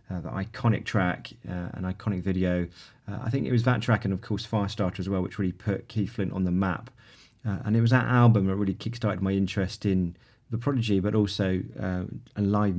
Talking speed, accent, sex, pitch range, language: 225 wpm, British, male, 90-115 Hz, English